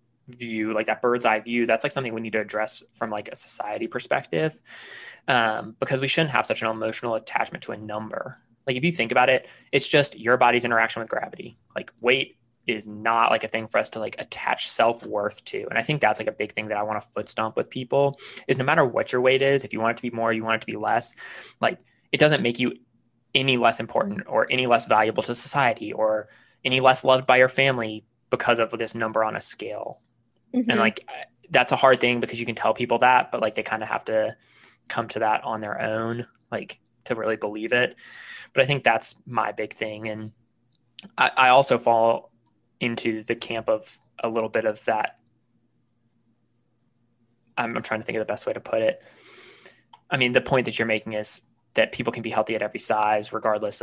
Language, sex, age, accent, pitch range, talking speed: English, male, 20-39, American, 110-130 Hz, 225 wpm